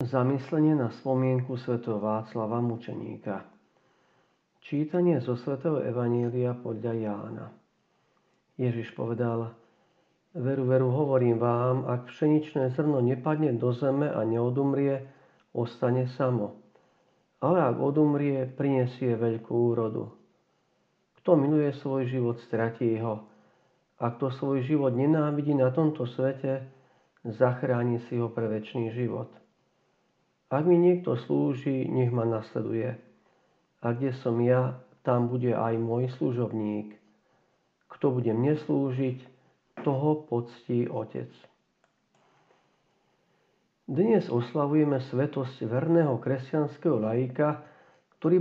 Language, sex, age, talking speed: Slovak, male, 50-69, 105 wpm